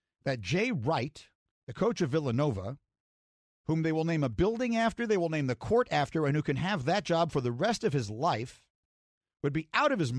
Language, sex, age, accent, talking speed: English, male, 50-69, American, 220 wpm